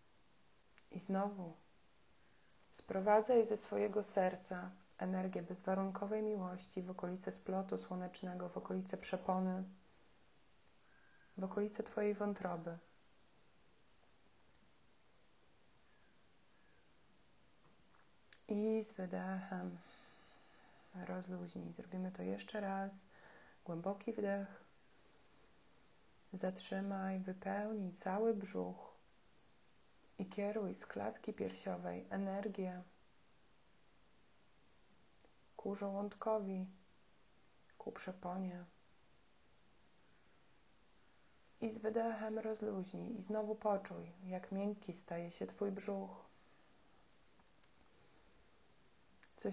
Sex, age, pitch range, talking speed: female, 30-49, 180-205 Hz, 70 wpm